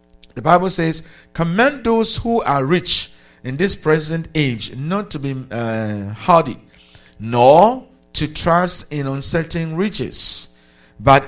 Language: English